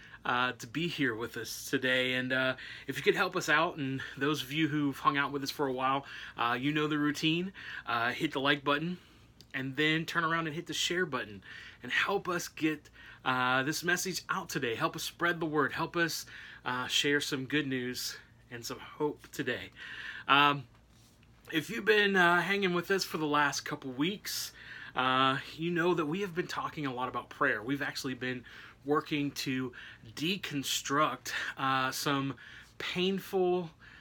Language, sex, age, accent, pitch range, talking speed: English, male, 30-49, American, 125-155 Hz, 185 wpm